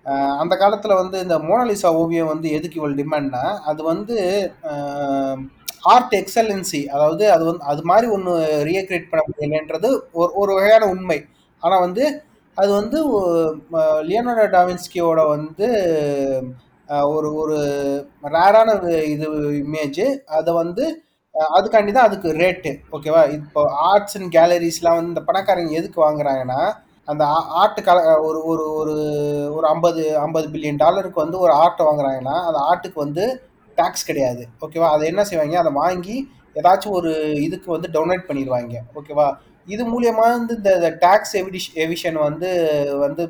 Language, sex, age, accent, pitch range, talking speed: Tamil, male, 30-49, native, 150-185 Hz, 135 wpm